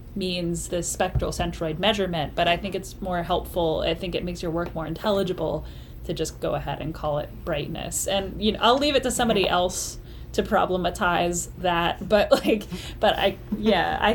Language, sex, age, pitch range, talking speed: English, female, 10-29, 165-210 Hz, 190 wpm